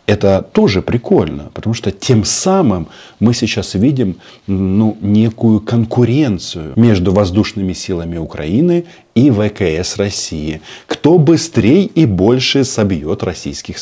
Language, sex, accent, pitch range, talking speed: Russian, male, native, 85-110 Hz, 115 wpm